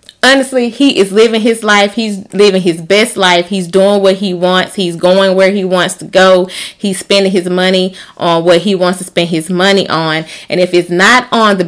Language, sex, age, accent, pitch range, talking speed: English, female, 20-39, American, 175-205 Hz, 215 wpm